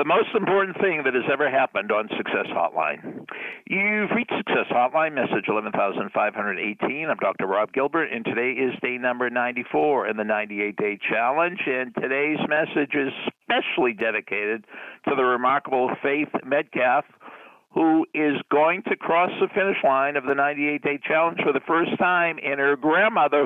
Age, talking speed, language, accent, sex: 60-79, 155 wpm, English, American, male